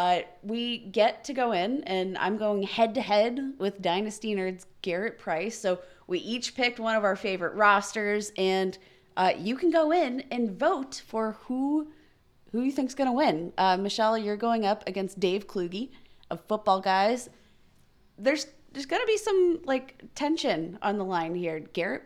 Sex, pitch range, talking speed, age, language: female, 185-245 Hz, 175 wpm, 20-39, English